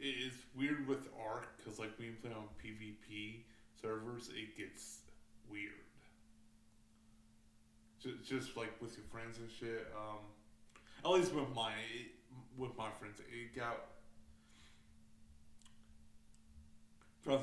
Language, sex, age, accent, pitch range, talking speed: English, male, 30-49, American, 105-115 Hz, 120 wpm